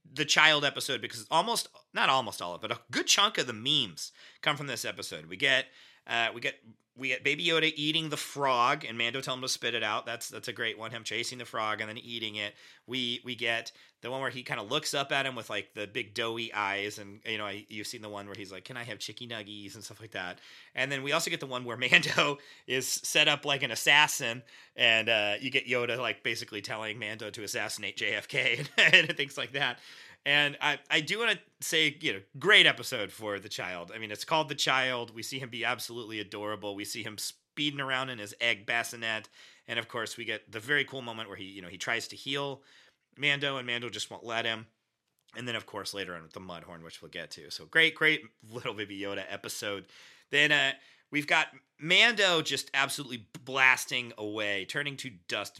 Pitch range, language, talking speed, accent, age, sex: 105-140 Hz, English, 230 wpm, American, 30-49, male